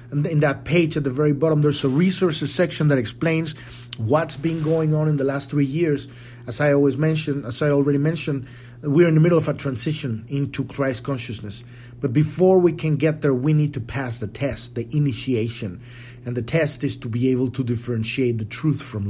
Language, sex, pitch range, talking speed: English, male, 120-145 Hz, 205 wpm